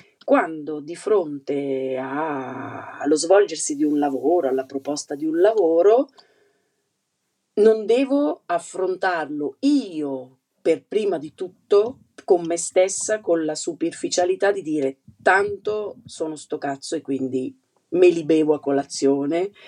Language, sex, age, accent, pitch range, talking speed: Italian, female, 40-59, native, 145-235 Hz, 120 wpm